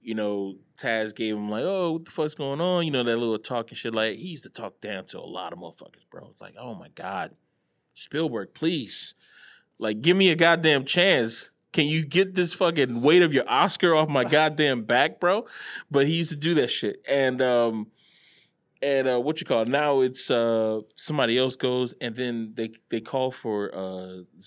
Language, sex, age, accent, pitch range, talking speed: English, male, 20-39, American, 105-135 Hz, 210 wpm